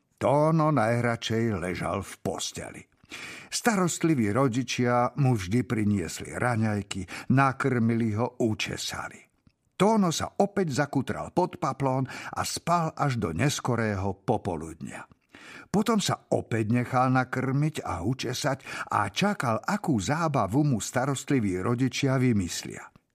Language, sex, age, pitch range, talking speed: Slovak, male, 50-69, 110-155 Hz, 105 wpm